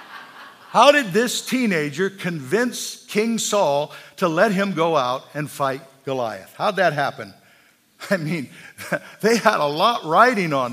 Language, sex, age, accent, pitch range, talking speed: English, male, 50-69, American, 175-230 Hz, 145 wpm